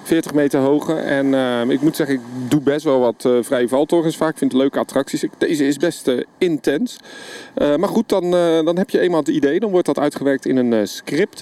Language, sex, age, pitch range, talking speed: Dutch, male, 40-59, 130-185 Hz, 245 wpm